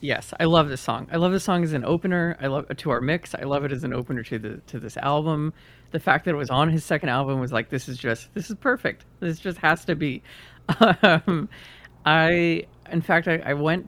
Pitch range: 120-160 Hz